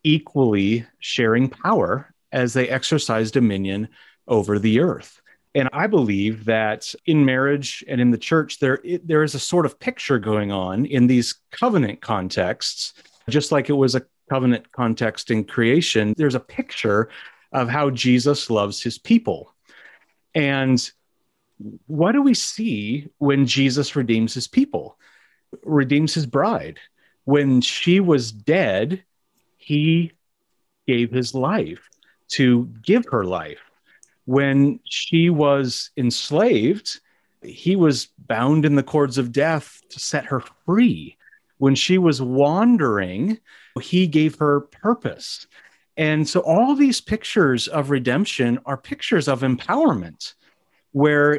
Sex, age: male, 40-59